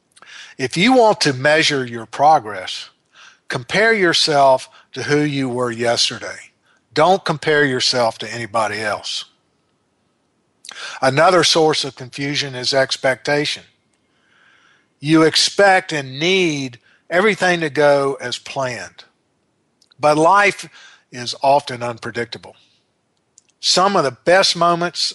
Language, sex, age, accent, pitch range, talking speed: English, male, 50-69, American, 130-155 Hz, 105 wpm